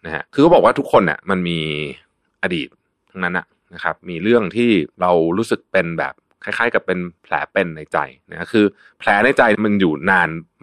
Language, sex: Thai, male